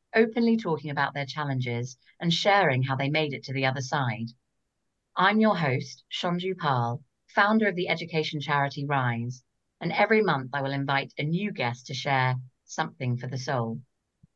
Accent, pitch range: British, 140-205 Hz